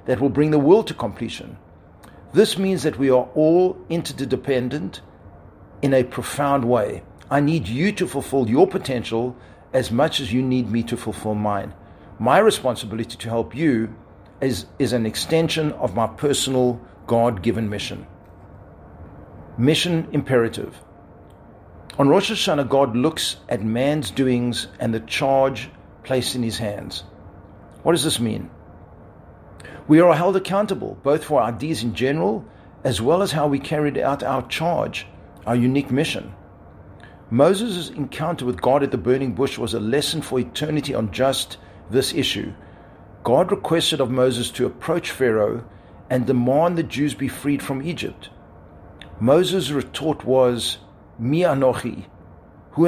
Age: 50-69